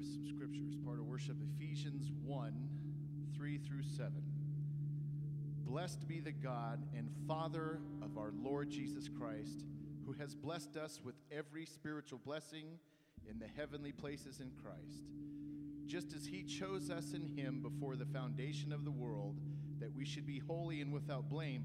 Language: English